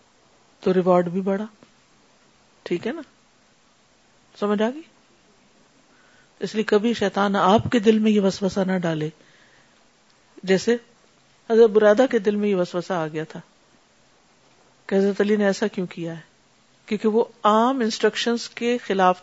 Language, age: Urdu, 50-69